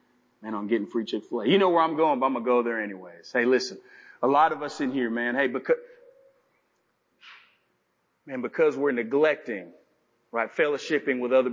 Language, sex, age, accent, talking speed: English, male, 40-59, American, 185 wpm